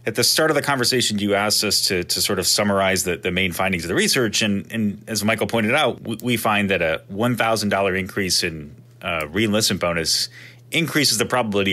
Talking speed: 205 wpm